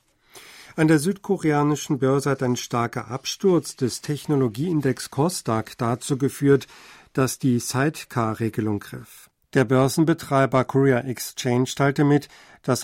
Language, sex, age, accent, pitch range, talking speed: German, male, 50-69, German, 125-145 Hz, 110 wpm